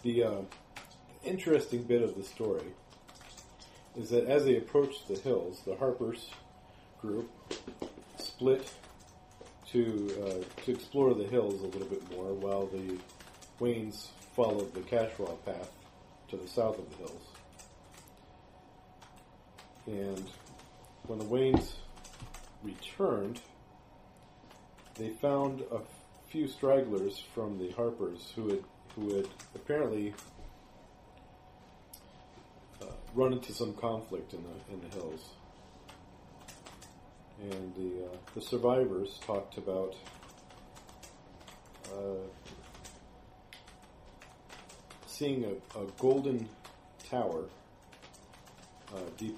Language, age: English, 40-59